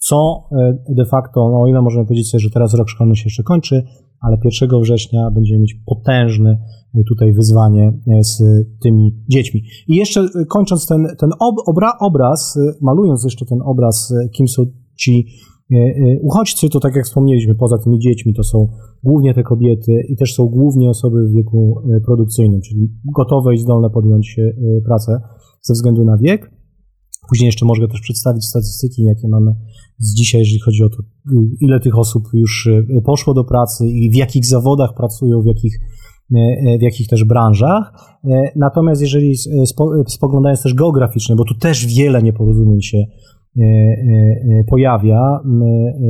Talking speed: 150 wpm